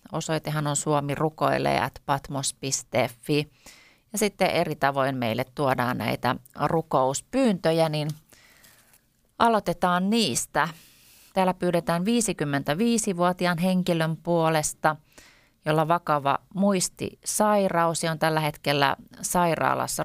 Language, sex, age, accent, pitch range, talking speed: Finnish, female, 30-49, native, 135-170 Hz, 80 wpm